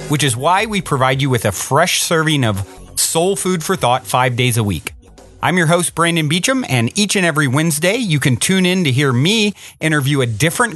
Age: 40-59